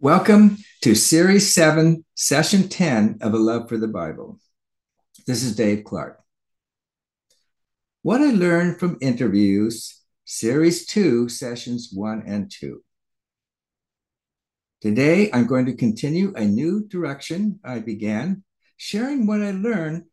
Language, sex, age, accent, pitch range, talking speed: English, male, 60-79, American, 115-165 Hz, 120 wpm